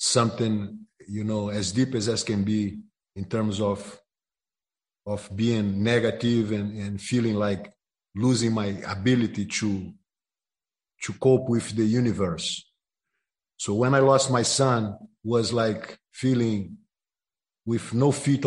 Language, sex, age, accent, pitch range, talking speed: English, male, 50-69, Brazilian, 110-130 Hz, 130 wpm